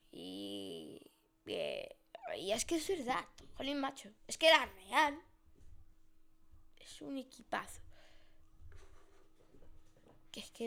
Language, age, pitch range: Spanish, 10-29, 225-295 Hz